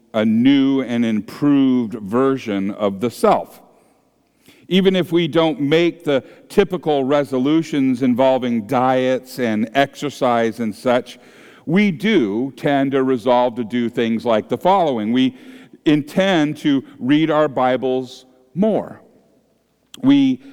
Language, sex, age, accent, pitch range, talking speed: English, male, 50-69, American, 130-195 Hz, 120 wpm